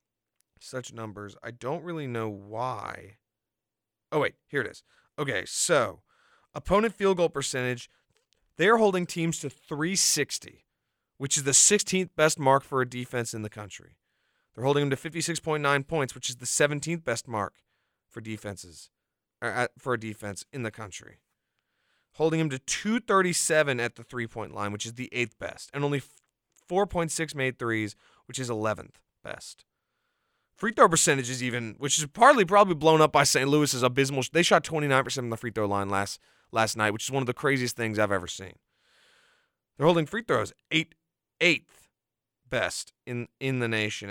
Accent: American